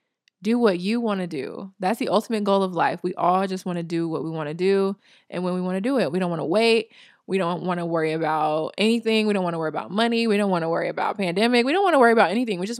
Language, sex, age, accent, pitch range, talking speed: English, female, 20-39, American, 175-205 Hz, 305 wpm